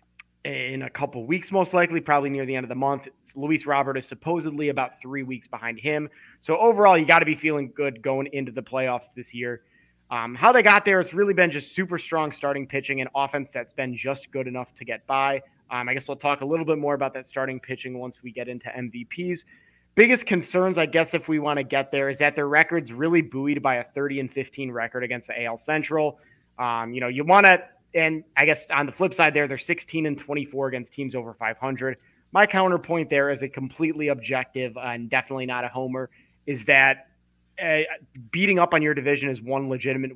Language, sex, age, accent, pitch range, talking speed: English, male, 20-39, American, 130-155 Hz, 220 wpm